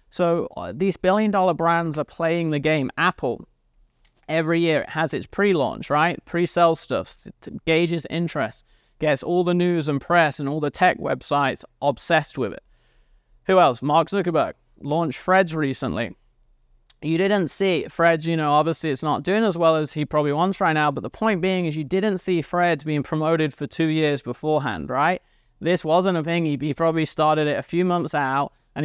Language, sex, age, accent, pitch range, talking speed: English, male, 20-39, British, 145-175 Hz, 185 wpm